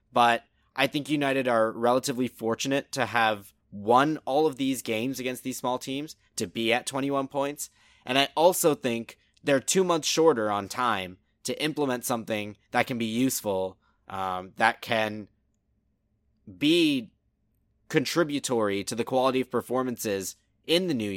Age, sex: 20-39, male